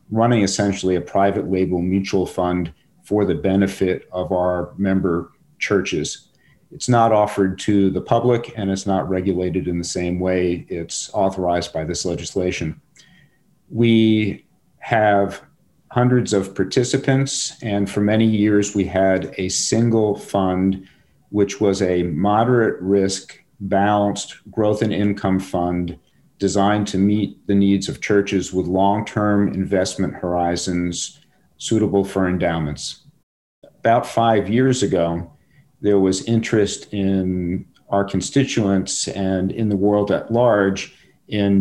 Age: 40-59